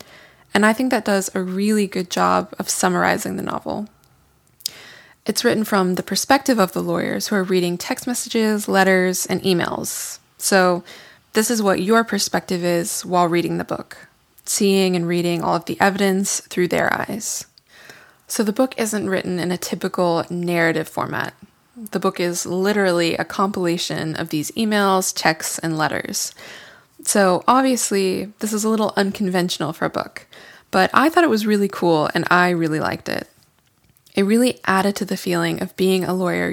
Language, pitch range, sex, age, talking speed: English, 175-215 Hz, female, 20-39, 170 wpm